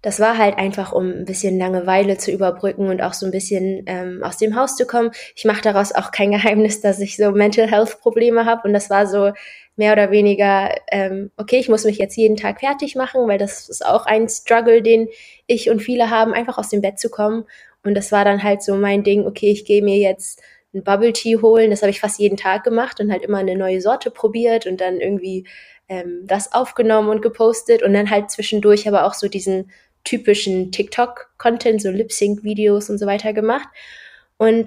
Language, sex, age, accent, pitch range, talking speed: German, female, 20-39, German, 200-240 Hz, 215 wpm